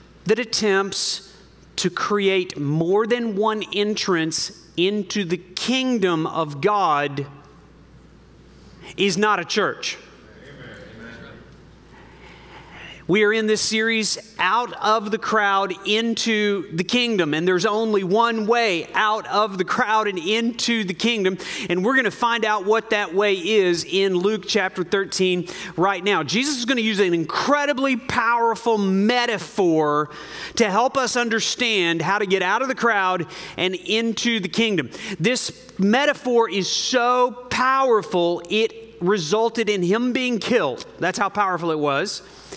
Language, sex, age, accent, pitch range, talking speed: English, male, 40-59, American, 175-225 Hz, 140 wpm